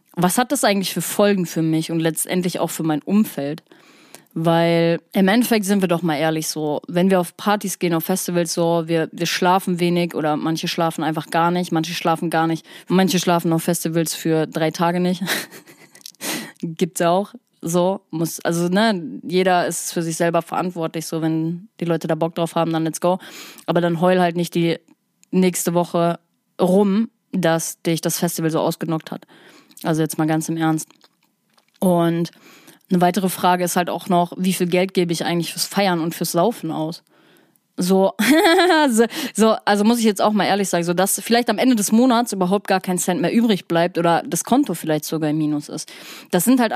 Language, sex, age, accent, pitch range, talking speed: German, female, 20-39, German, 165-195 Hz, 195 wpm